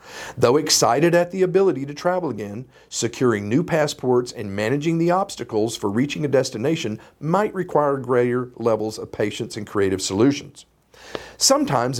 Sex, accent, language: male, American, English